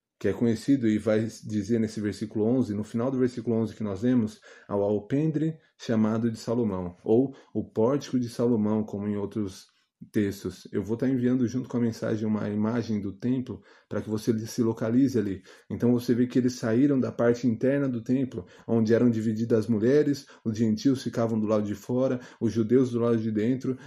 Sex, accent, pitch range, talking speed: male, Brazilian, 110-125 Hz, 195 wpm